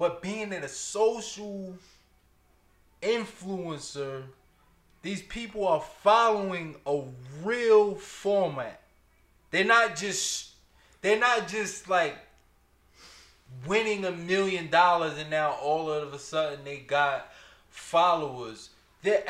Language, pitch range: English, 160-215 Hz